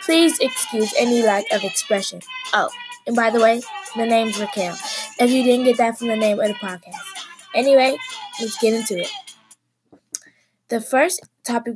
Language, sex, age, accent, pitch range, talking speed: English, female, 10-29, American, 195-250 Hz, 170 wpm